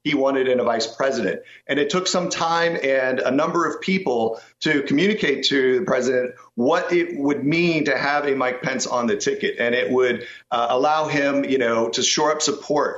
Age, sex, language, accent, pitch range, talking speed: 50-69, male, English, American, 135-170 Hz, 210 wpm